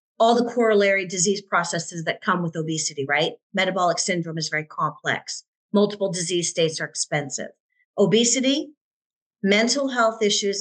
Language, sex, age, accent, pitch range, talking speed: English, female, 40-59, American, 185-230 Hz, 135 wpm